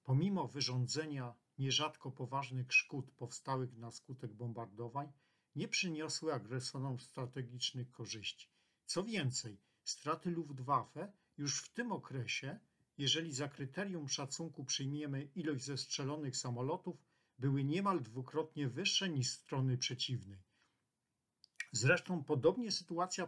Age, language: 50-69, Polish